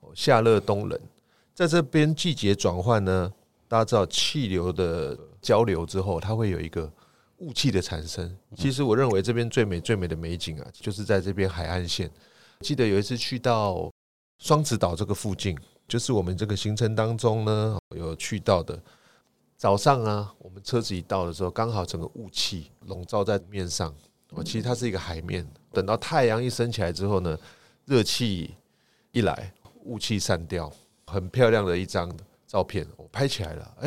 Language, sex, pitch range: Chinese, male, 90-120 Hz